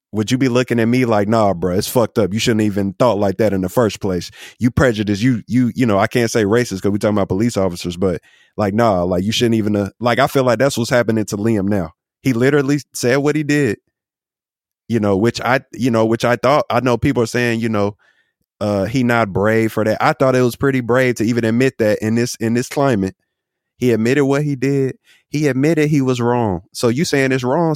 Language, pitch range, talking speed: English, 110-140 Hz, 245 wpm